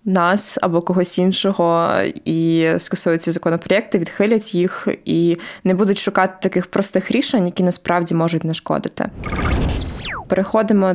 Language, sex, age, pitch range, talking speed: Ukrainian, female, 20-39, 175-195 Hz, 125 wpm